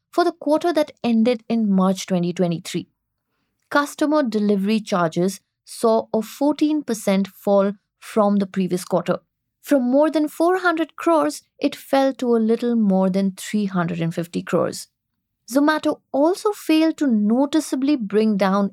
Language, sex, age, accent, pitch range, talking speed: English, female, 20-39, Indian, 195-290 Hz, 130 wpm